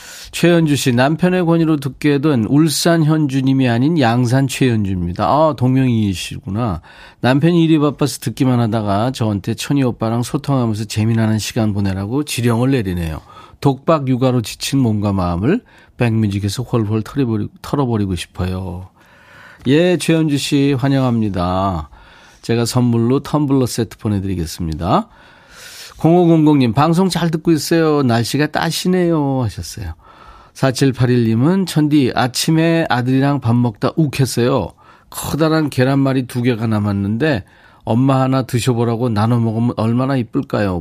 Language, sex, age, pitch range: Korean, male, 40-59, 110-150 Hz